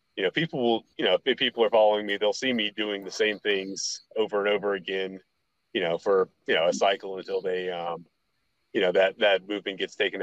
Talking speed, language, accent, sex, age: 230 wpm, English, American, male, 30-49